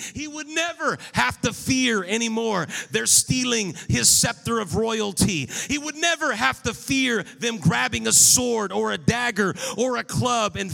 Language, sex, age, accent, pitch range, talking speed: English, male, 40-59, American, 205-255 Hz, 170 wpm